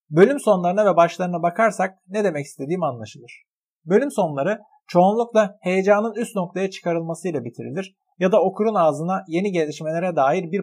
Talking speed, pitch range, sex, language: 140 wpm, 150-205 Hz, male, Turkish